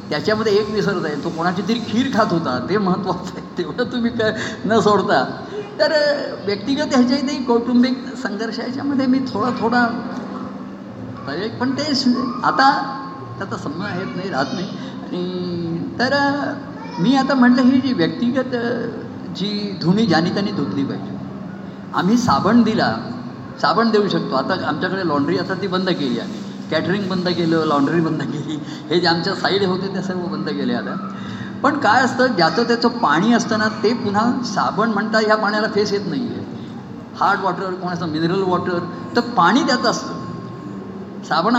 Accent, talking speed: native, 155 wpm